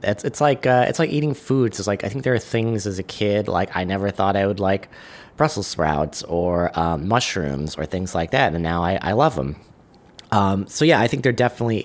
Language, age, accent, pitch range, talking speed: English, 30-49, American, 85-110 Hz, 240 wpm